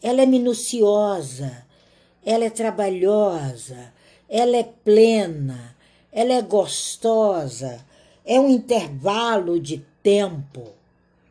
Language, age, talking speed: Portuguese, 60-79, 90 wpm